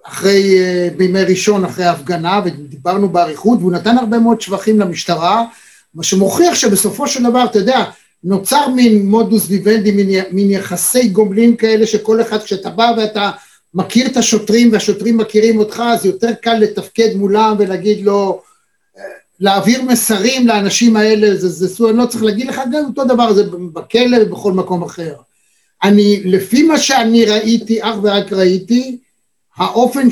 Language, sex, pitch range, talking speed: Hebrew, male, 200-250 Hz, 150 wpm